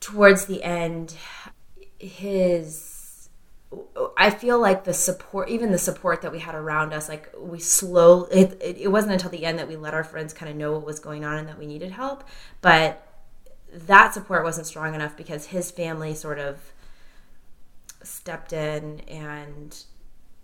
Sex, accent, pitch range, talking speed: female, American, 150-180 Hz, 165 wpm